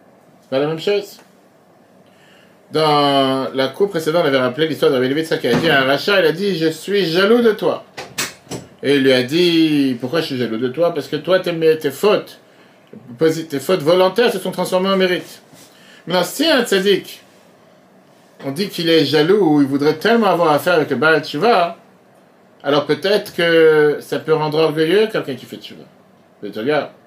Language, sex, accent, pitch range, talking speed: French, male, French, 145-195 Hz, 195 wpm